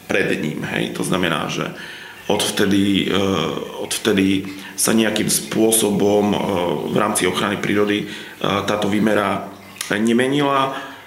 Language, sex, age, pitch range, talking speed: Slovak, male, 40-59, 100-110 Hz, 120 wpm